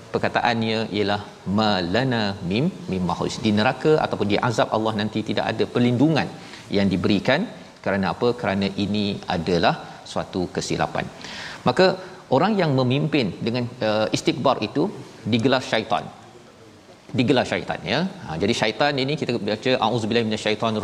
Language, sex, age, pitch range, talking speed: Malayalam, male, 40-59, 110-135 Hz, 130 wpm